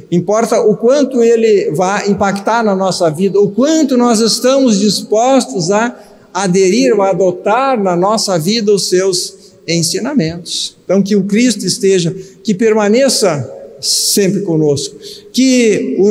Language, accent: Portuguese, Brazilian